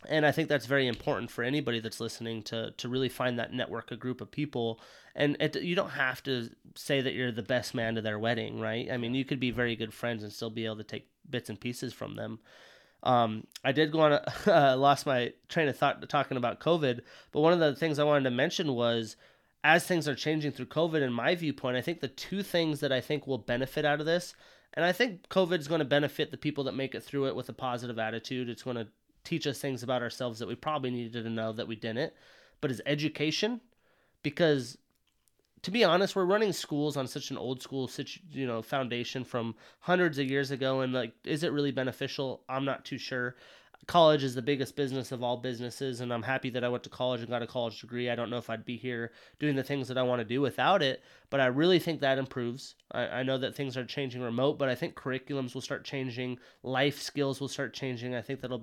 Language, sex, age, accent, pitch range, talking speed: English, male, 20-39, American, 120-145 Hz, 245 wpm